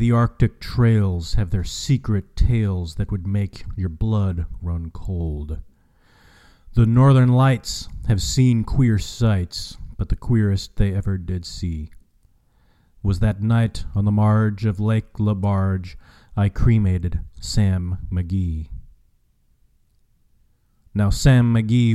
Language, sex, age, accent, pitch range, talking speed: English, male, 40-59, American, 90-115 Hz, 125 wpm